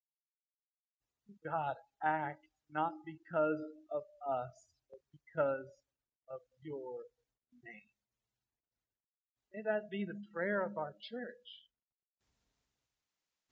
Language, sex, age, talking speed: English, male, 50-69, 90 wpm